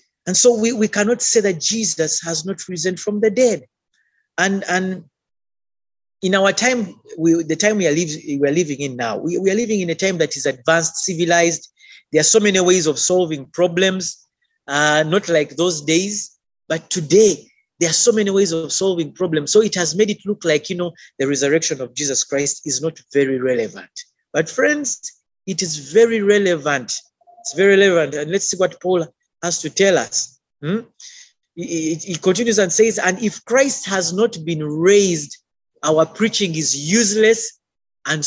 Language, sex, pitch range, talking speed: English, male, 155-210 Hz, 185 wpm